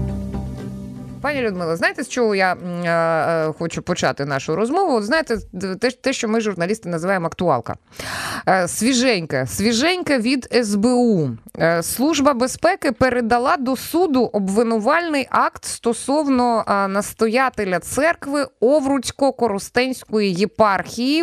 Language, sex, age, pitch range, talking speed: Ukrainian, female, 20-39, 180-255 Hz, 95 wpm